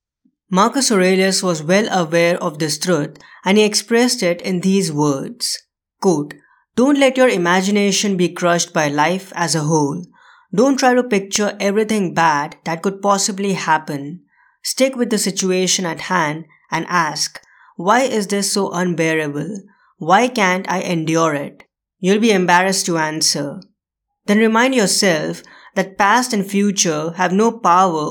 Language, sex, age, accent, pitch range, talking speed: English, female, 20-39, Indian, 170-210 Hz, 145 wpm